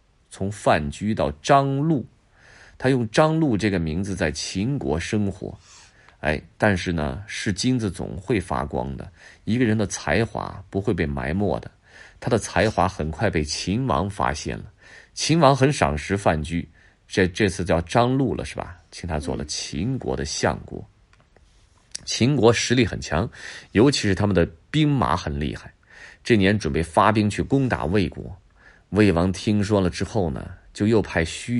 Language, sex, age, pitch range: Chinese, male, 30-49, 80-115 Hz